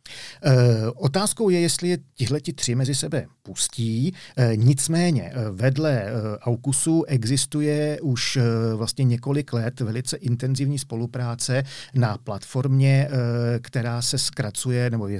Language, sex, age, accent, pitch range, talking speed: Czech, male, 40-59, native, 110-130 Hz, 130 wpm